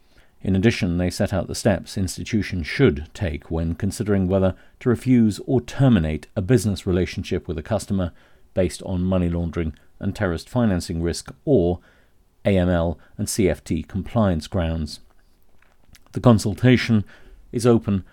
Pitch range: 85-105 Hz